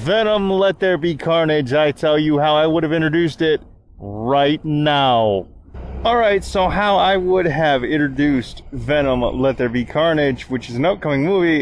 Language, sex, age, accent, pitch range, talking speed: English, male, 20-39, American, 115-155 Hz, 170 wpm